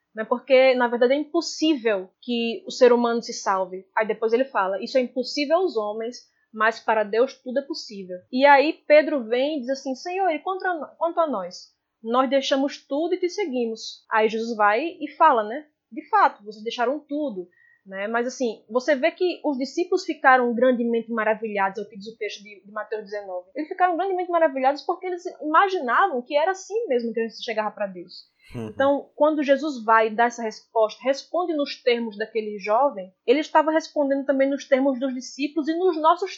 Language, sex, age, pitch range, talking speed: Portuguese, female, 20-39, 225-320 Hz, 190 wpm